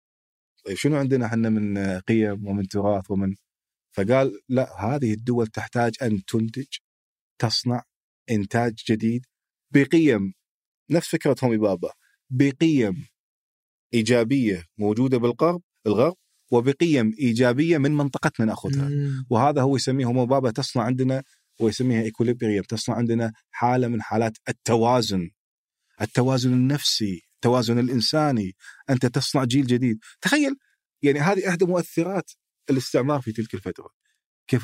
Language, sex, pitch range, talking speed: Arabic, male, 110-135 Hz, 115 wpm